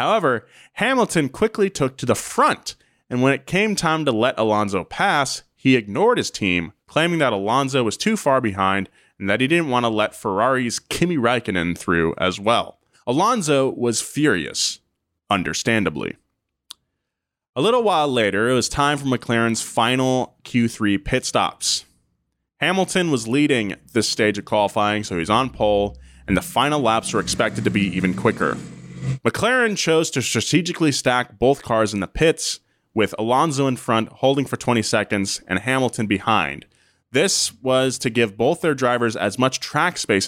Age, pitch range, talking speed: 20-39, 105-140 Hz, 165 wpm